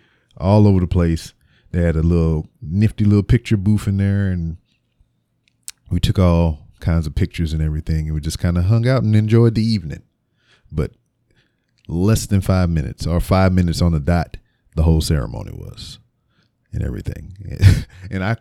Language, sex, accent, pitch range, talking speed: English, male, American, 85-110 Hz, 175 wpm